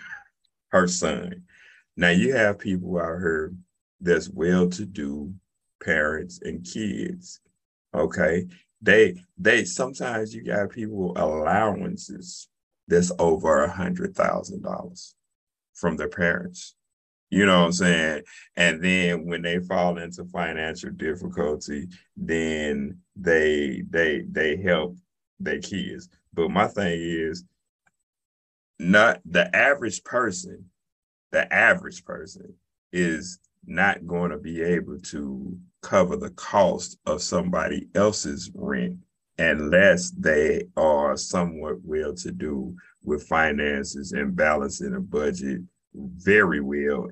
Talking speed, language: 115 wpm, English